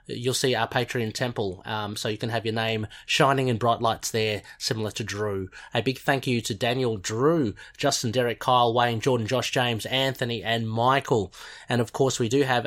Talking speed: 205 wpm